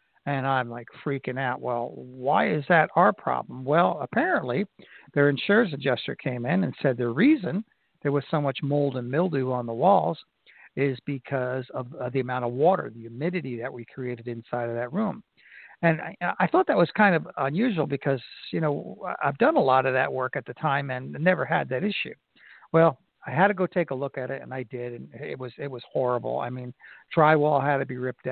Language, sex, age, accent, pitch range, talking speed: English, male, 60-79, American, 130-170 Hz, 215 wpm